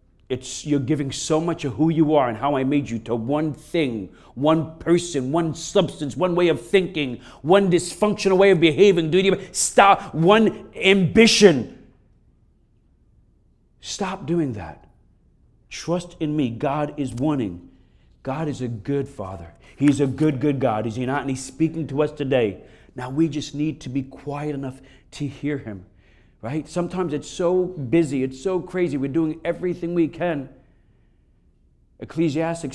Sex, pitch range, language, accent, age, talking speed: male, 130-160 Hz, English, American, 40-59, 160 wpm